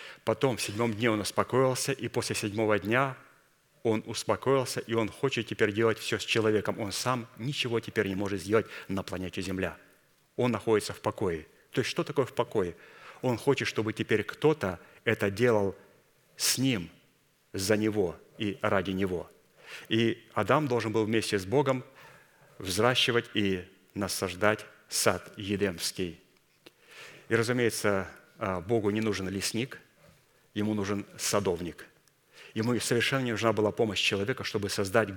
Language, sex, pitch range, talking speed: Russian, male, 100-120 Hz, 145 wpm